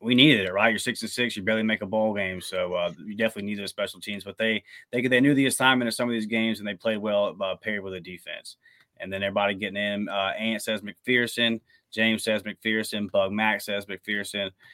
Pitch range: 100-120 Hz